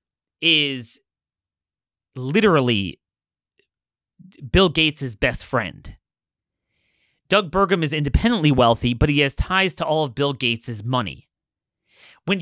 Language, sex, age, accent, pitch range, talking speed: English, male, 30-49, American, 130-185 Hz, 105 wpm